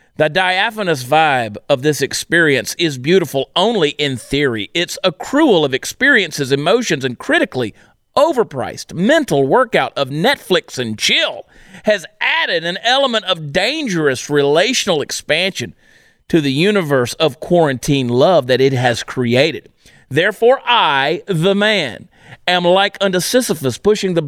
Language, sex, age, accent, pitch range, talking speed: English, male, 40-59, American, 155-230 Hz, 130 wpm